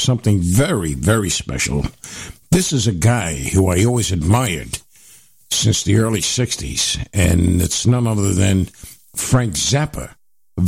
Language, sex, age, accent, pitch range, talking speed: English, male, 60-79, American, 95-130 Hz, 135 wpm